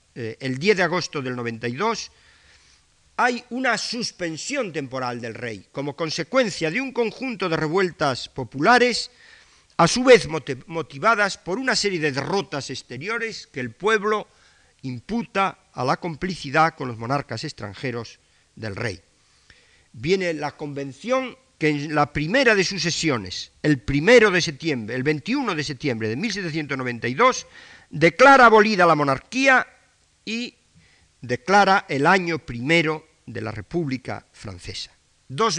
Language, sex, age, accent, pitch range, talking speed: Spanish, male, 50-69, Spanish, 135-195 Hz, 130 wpm